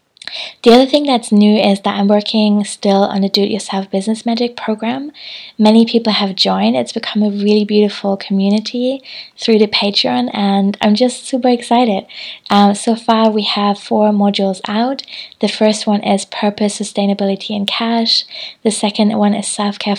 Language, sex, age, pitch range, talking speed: English, female, 20-39, 195-220 Hz, 165 wpm